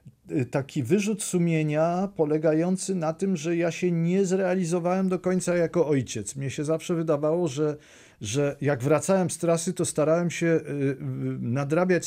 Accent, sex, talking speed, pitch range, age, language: native, male, 145 wpm, 135-170 Hz, 40-59, Polish